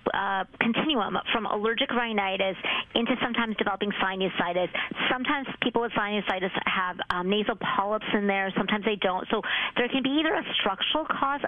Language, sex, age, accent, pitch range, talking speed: English, female, 40-59, American, 195-235 Hz, 155 wpm